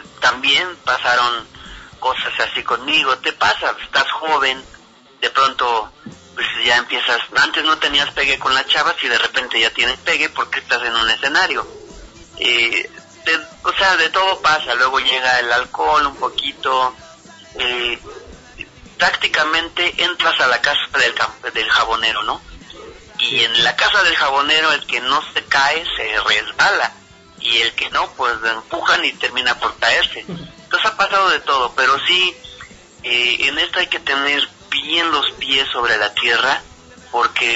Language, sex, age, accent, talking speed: Spanish, male, 40-59, Mexican, 160 wpm